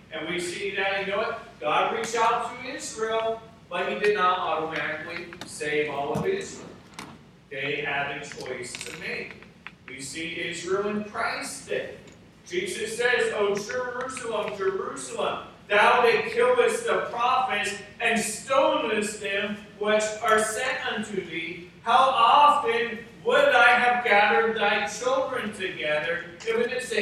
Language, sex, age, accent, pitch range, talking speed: English, male, 40-59, American, 170-230 Hz, 140 wpm